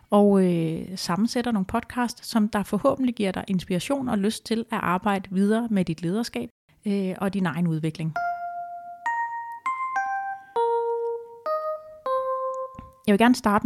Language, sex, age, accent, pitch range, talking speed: Danish, female, 30-49, native, 175-210 Hz, 125 wpm